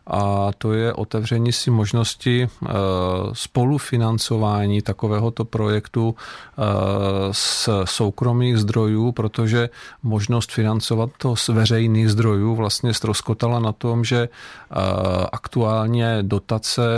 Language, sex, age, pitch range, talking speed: Czech, male, 40-59, 105-120 Hz, 90 wpm